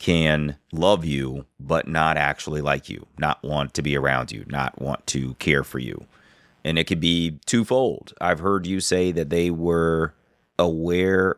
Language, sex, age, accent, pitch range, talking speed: English, male, 30-49, American, 75-95 Hz, 175 wpm